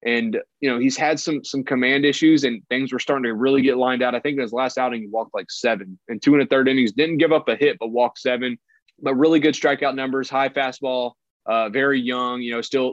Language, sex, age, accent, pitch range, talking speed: English, male, 20-39, American, 120-155 Hz, 255 wpm